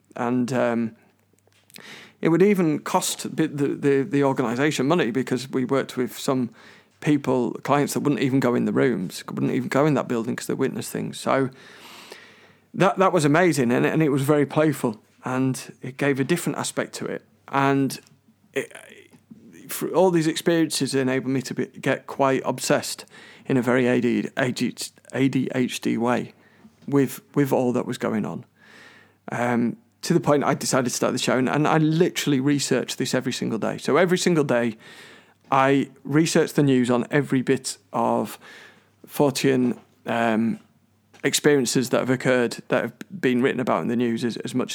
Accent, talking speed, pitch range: British, 175 wpm, 120-145 Hz